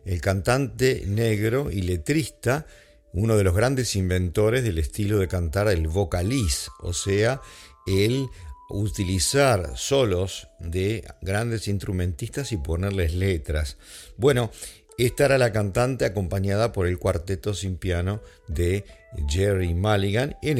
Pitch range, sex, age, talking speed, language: 90-115 Hz, male, 50-69, 120 wpm, English